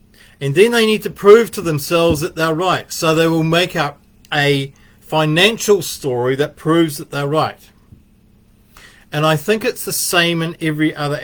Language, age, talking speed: English, 40-59, 175 wpm